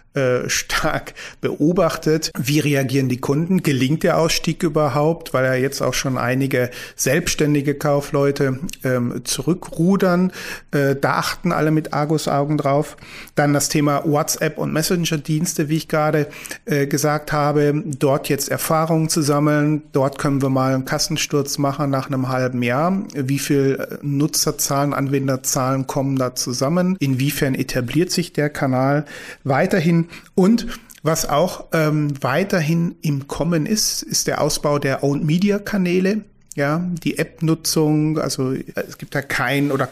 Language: German